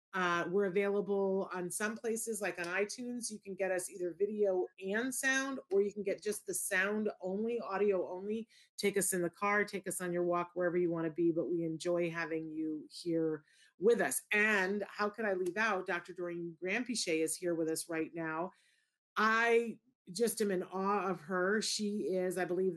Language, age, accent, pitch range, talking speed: English, 30-49, American, 170-200 Hz, 200 wpm